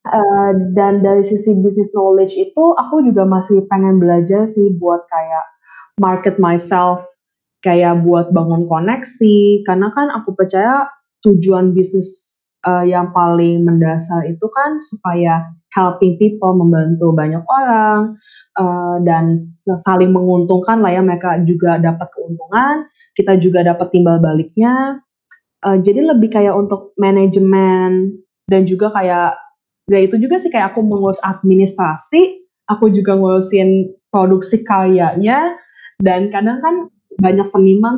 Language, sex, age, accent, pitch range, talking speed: Indonesian, female, 20-39, native, 185-230 Hz, 130 wpm